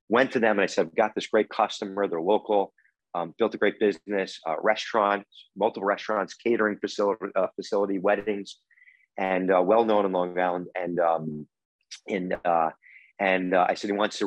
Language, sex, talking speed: English, male, 185 wpm